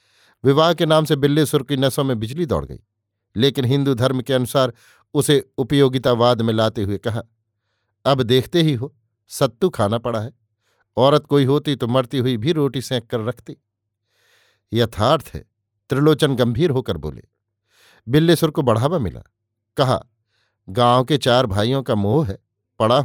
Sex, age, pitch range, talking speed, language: male, 50-69, 110-145 Hz, 155 wpm, Hindi